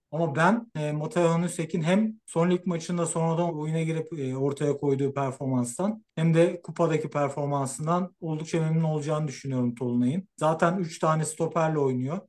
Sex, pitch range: male, 145-170 Hz